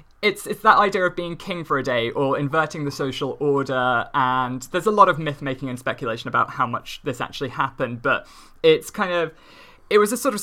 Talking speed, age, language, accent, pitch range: 220 wpm, 20-39, English, British, 130-165 Hz